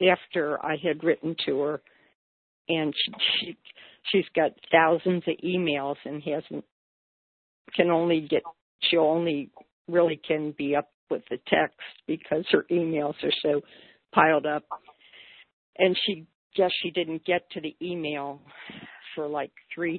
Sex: female